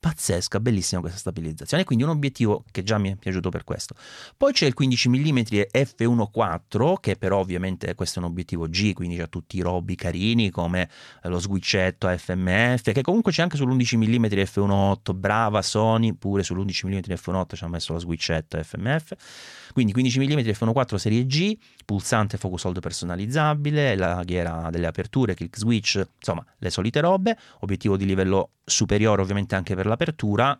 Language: English